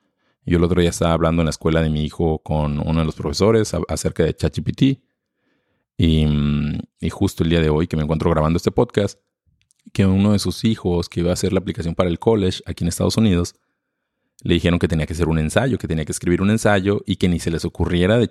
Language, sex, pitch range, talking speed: Spanish, male, 80-100 Hz, 235 wpm